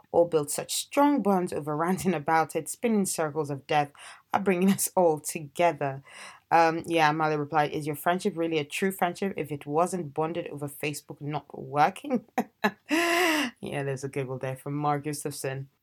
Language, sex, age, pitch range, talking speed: English, female, 20-39, 145-185 Hz, 170 wpm